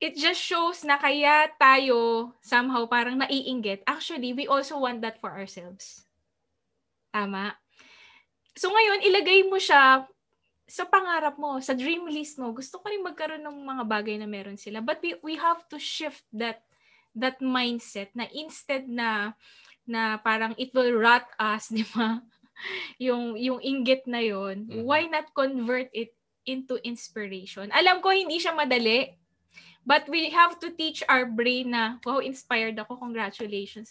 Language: Filipino